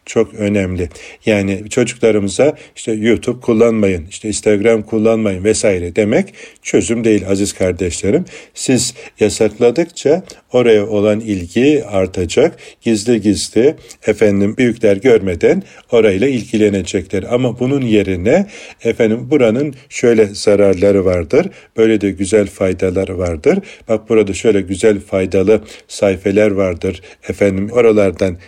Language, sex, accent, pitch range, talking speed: Turkish, male, native, 100-115 Hz, 105 wpm